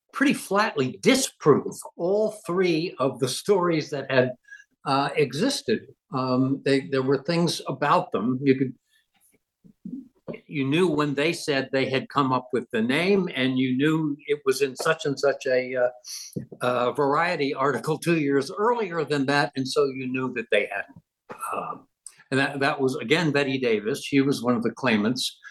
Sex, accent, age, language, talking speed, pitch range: male, American, 60-79, English, 170 wpm, 120-160 Hz